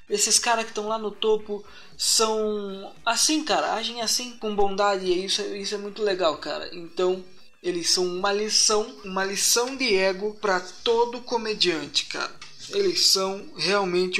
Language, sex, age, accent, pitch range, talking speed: Portuguese, male, 20-39, Brazilian, 170-220 Hz, 150 wpm